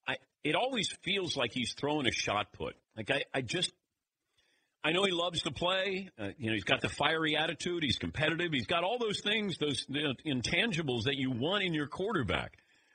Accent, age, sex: American, 50-69, male